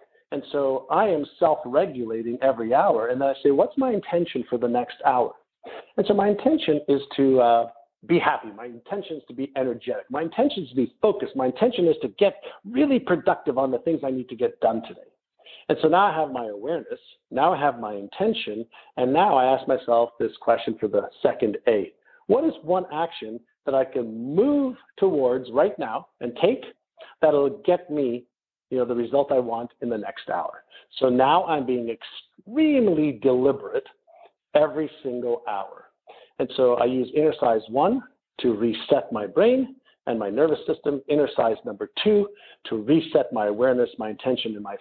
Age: 50-69